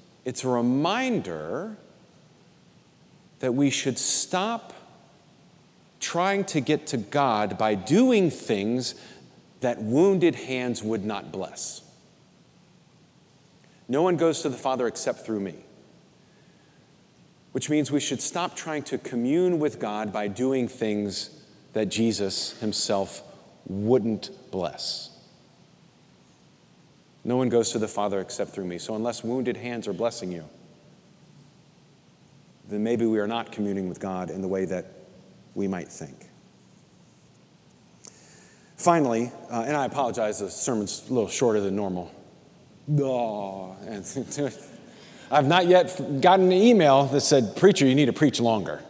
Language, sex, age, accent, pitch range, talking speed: English, male, 40-59, American, 105-155 Hz, 130 wpm